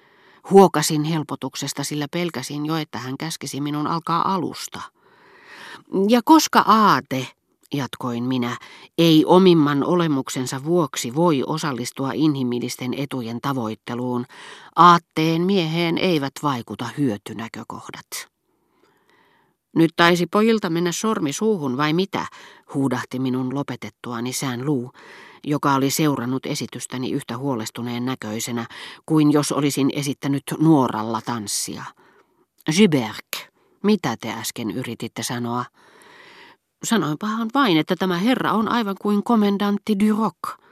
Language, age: Finnish, 40-59